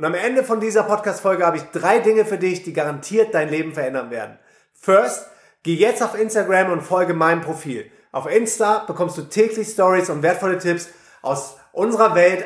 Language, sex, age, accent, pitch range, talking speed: German, male, 30-49, German, 155-200 Hz, 190 wpm